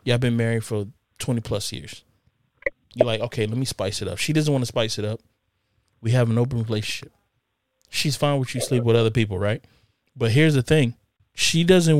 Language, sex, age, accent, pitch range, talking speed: English, male, 20-39, American, 110-145 Hz, 215 wpm